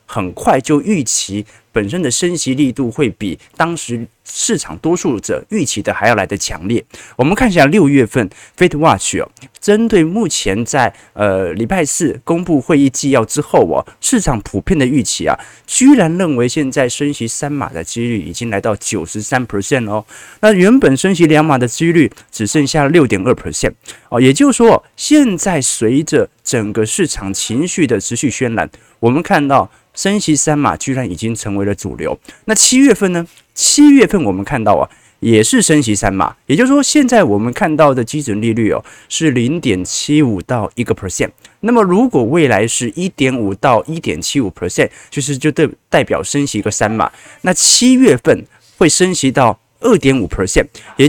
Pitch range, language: 110-170 Hz, Chinese